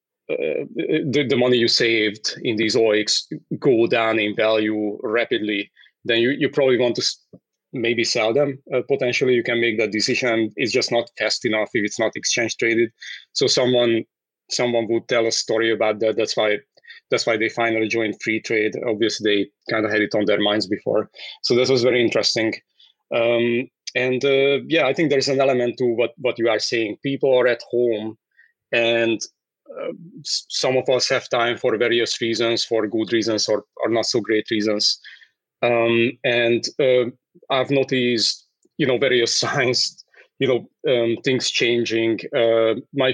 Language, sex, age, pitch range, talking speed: English, male, 30-49, 115-130 Hz, 175 wpm